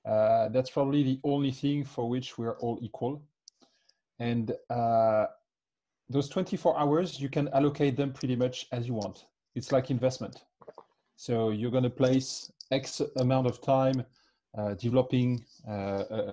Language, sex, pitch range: English, male, 125-155 Hz